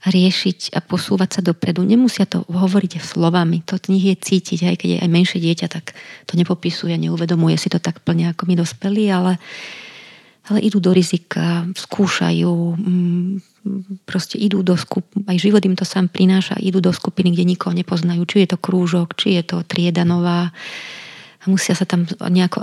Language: Slovak